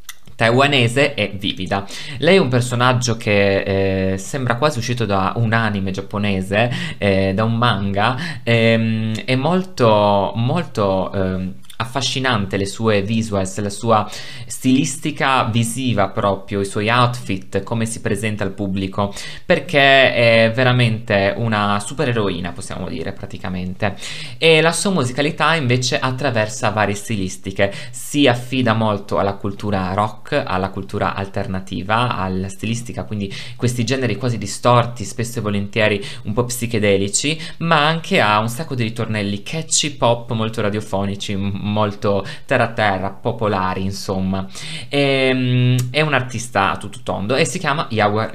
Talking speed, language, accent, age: 135 wpm, Italian, native, 20-39